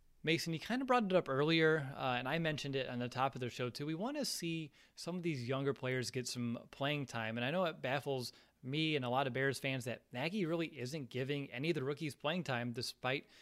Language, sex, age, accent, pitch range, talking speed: English, male, 20-39, American, 125-155 Hz, 255 wpm